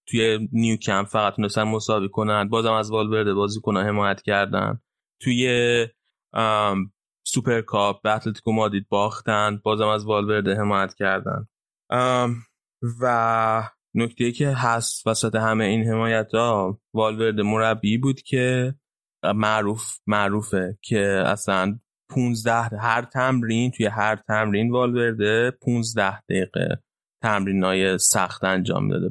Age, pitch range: 20-39, 105-115 Hz